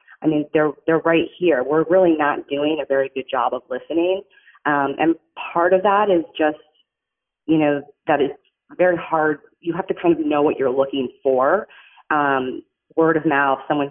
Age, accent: 30-49, American